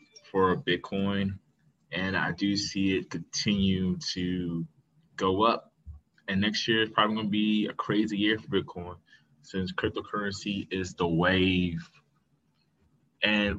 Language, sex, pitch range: English, male, 90-105 Hz